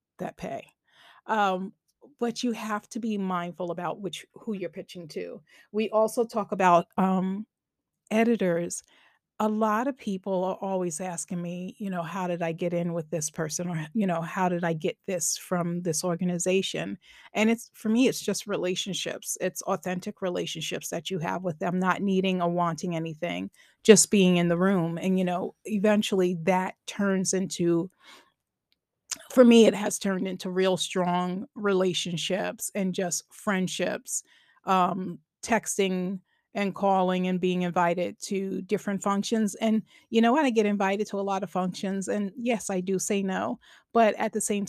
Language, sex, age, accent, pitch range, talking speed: English, female, 30-49, American, 180-210 Hz, 170 wpm